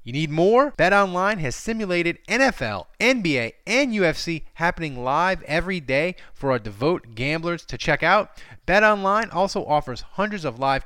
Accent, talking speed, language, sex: American, 150 wpm, English, male